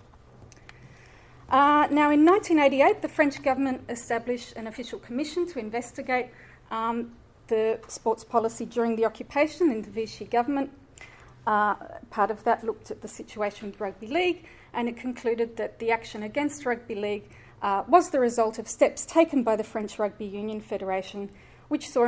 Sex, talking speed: female, 160 wpm